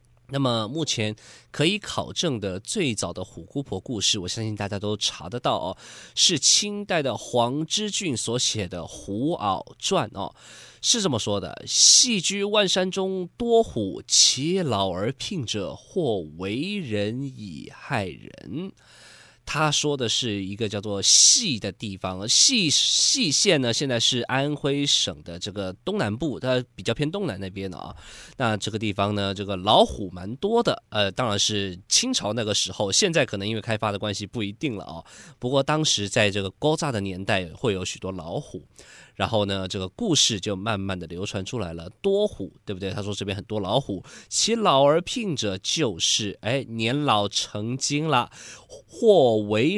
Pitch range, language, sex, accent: 100-140 Hz, Chinese, male, native